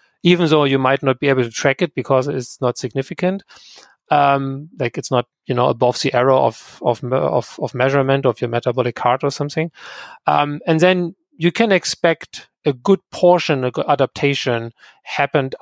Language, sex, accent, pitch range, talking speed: English, male, German, 130-165 Hz, 175 wpm